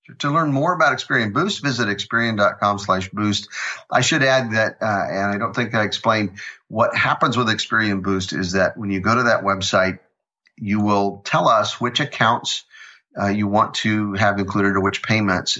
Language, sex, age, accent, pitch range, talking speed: English, male, 50-69, American, 95-110 Hz, 190 wpm